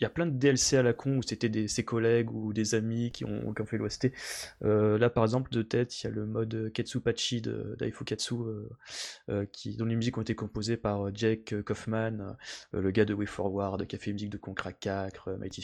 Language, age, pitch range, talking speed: French, 20-39, 105-120 Hz, 235 wpm